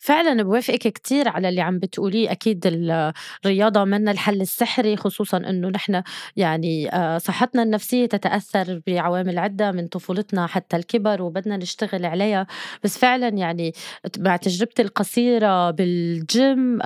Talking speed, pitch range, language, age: 125 wpm, 180-220 Hz, Arabic, 20-39